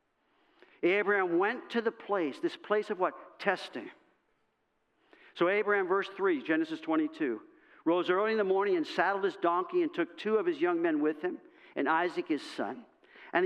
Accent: American